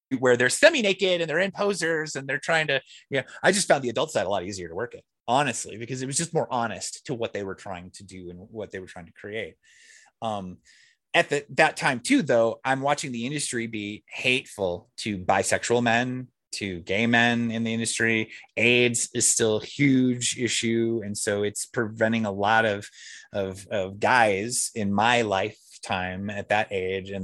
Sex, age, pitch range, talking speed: male, 30-49, 100-135 Hz, 205 wpm